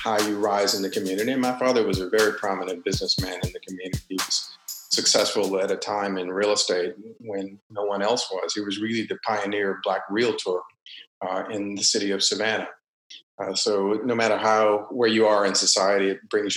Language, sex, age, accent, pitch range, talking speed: English, male, 40-59, American, 95-115 Hz, 205 wpm